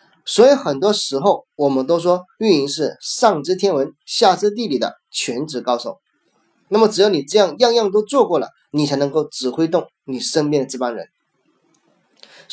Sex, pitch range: male, 135-180 Hz